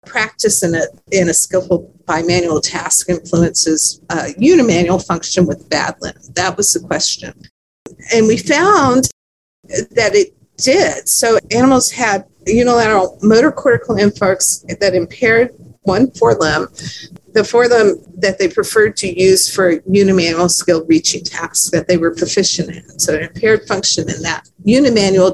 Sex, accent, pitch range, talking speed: female, American, 180-245 Hz, 140 wpm